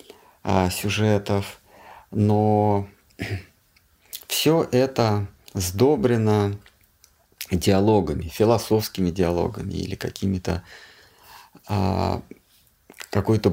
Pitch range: 90-105 Hz